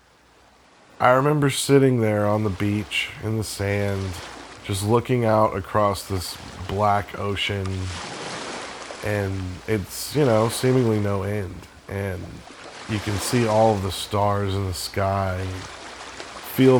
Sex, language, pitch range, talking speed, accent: male, English, 90-110 Hz, 130 wpm, American